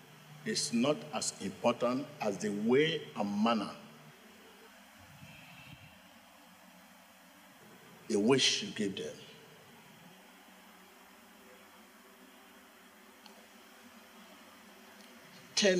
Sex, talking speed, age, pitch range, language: male, 55 wpm, 50-69, 125-170 Hz, English